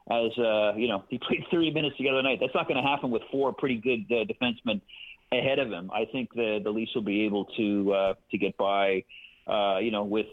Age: 40-59